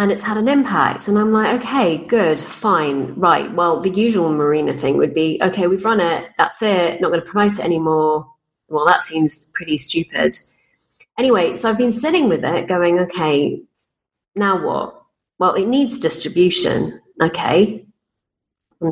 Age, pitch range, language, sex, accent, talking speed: 30-49, 155-200 Hz, English, female, British, 170 wpm